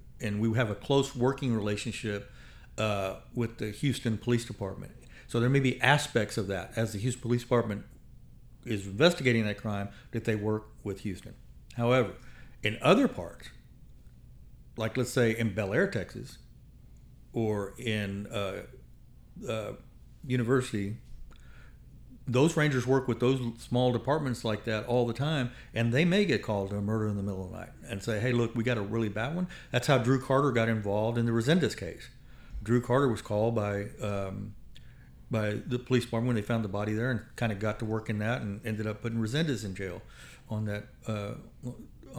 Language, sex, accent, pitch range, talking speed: English, male, American, 105-125 Hz, 185 wpm